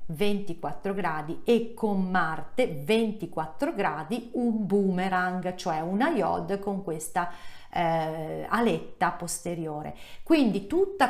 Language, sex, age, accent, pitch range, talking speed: Italian, female, 40-59, native, 180-230 Hz, 105 wpm